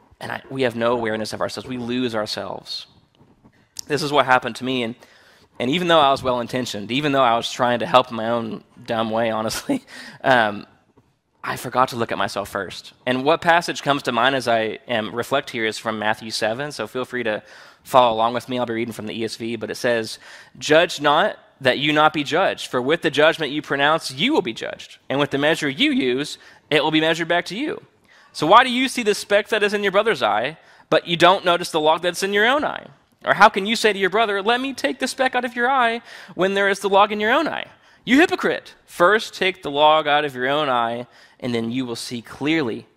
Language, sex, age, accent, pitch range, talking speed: English, male, 20-39, American, 115-170 Hz, 245 wpm